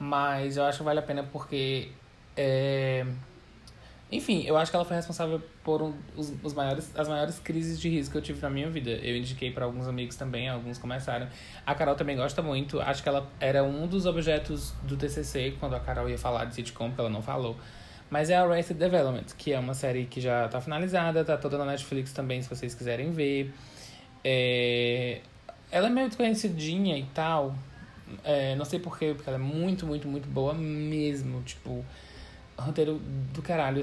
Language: Portuguese